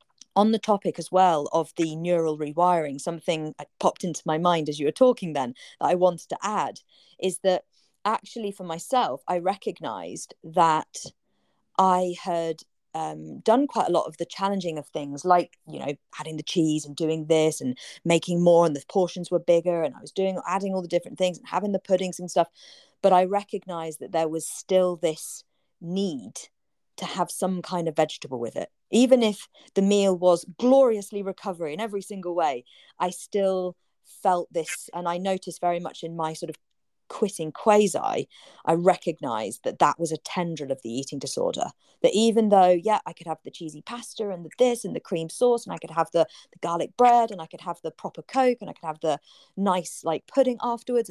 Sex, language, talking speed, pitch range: female, English, 200 wpm, 160-200 Hz